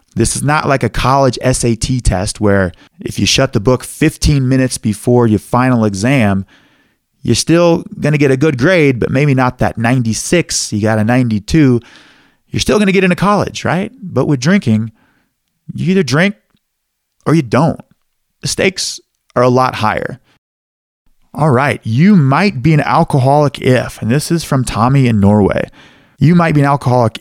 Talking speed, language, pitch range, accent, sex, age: 175 wpm, English, 110-150 Hz, American, male, 30-49